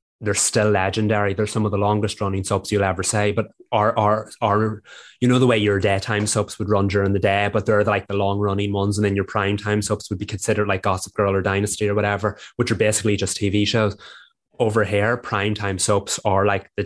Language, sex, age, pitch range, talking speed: English, male, 20-39, 100-110 Hz, 230 wpm